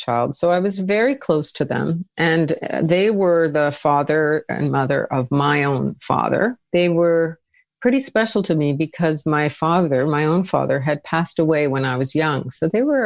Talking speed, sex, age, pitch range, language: 190 wpm, female, 50-69, 140-180 Hz, English